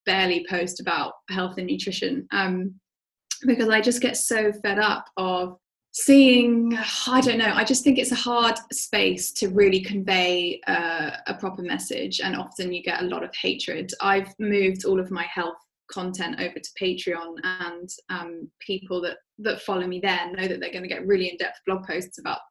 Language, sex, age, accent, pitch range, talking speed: English, female, 10-29, British, 185-230 Hz, 185 wpm